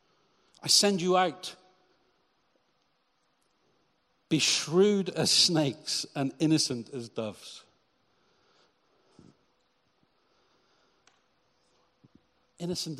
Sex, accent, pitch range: male, British, 140-180 Hz